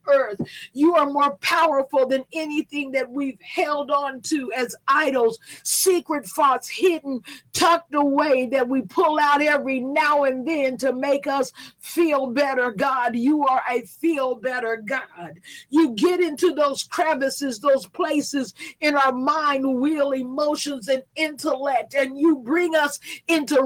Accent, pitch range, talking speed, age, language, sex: American, 270-320 Hz, 145 wpm, 50-69, English, female